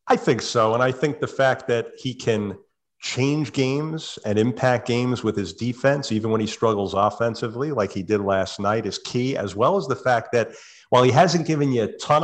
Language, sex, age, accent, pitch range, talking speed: English, male, 40-59, American, 110-140 Hz, 215 wpm